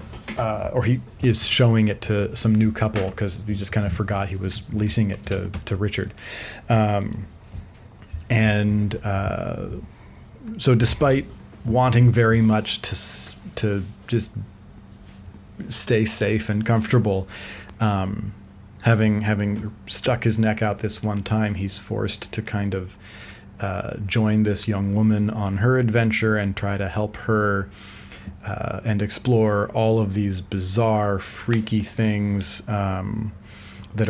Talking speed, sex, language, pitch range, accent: 135 wpm, male, English, 100-110 Hz, American